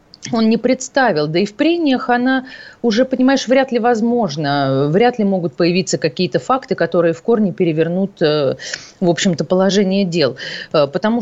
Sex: female